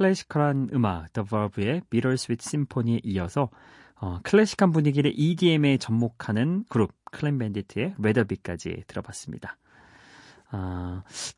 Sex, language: male, Korean